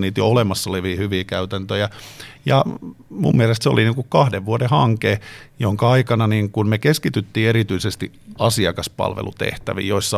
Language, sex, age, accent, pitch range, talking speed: Finnish, male, 50-69, native, 95-115 Hz, 140 wpm